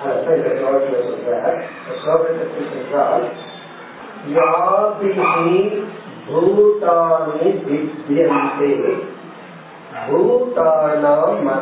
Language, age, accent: Tamil, 50-69, native